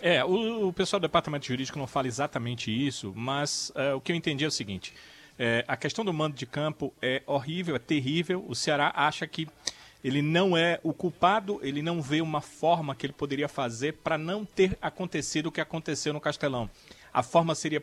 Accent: Brazilian